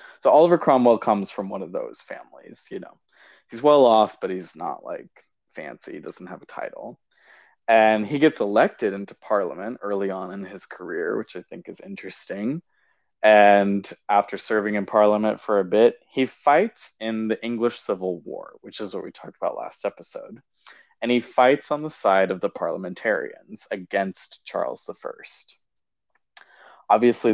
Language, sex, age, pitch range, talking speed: English, male, 20-39, 100-125 Hz, 165 wpm